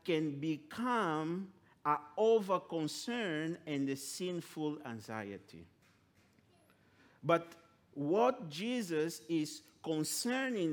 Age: 50-69